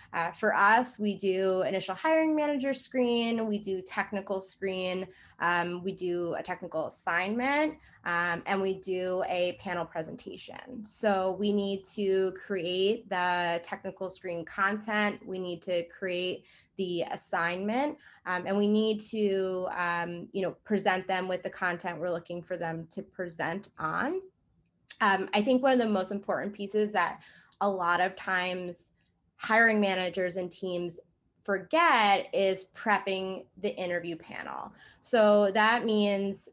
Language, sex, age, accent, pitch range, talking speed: English, female, 20-39, American, 180-210 Hz, 140 wpm